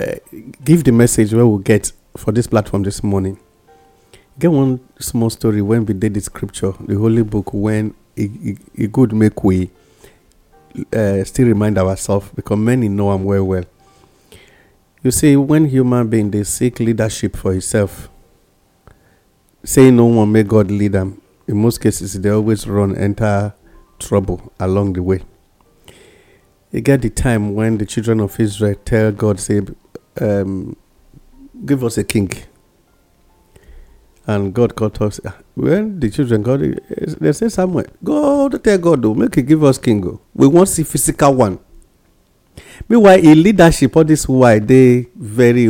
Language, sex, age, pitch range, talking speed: English, male, 50-69, 100-125 Hz, 160 wpm